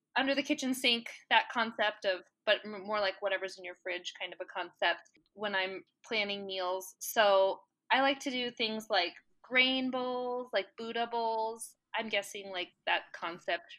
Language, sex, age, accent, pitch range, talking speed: English, female, 20-39, American, 195-245 Hz, 170 wpm